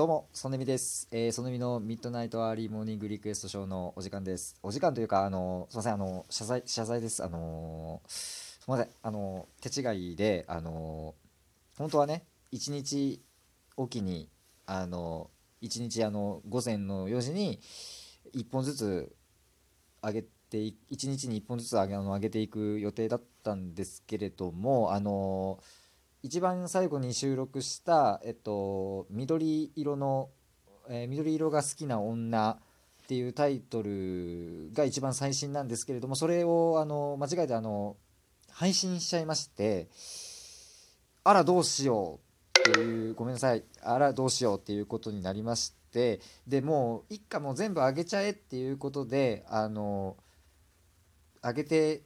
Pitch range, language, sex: 100-140 Hz, Japanese, male